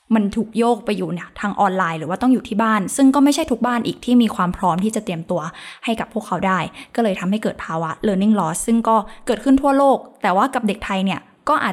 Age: 20-39